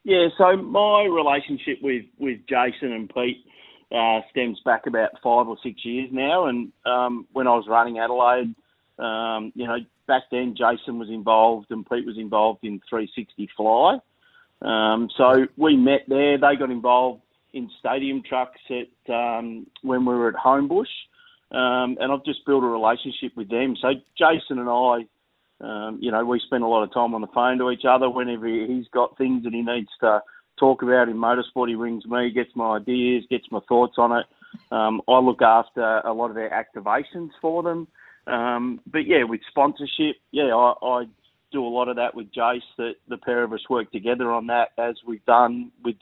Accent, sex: Australian, male